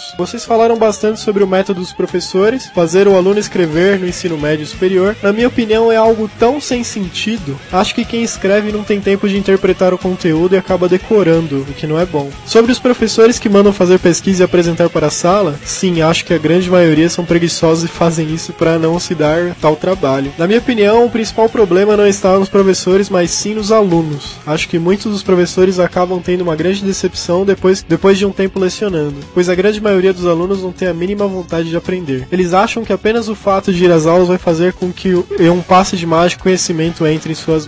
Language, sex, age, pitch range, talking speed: Portuguese, male, 20-39, 165-200 Hz, 220 wpm